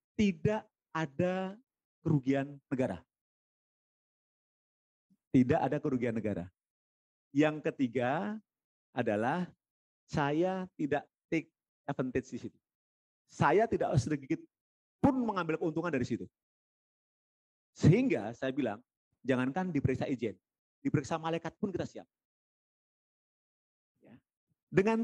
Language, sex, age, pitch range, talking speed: Indonesian, male, 40-59, 125-190 Hz, 90 wpm